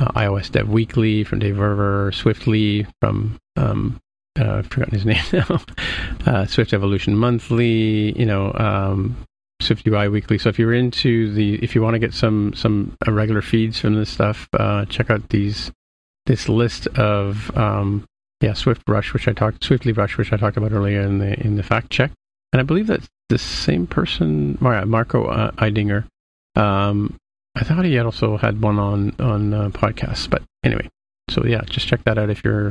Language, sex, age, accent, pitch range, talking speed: English, male, 40-59, American, 105-120 Hz, 190 wpm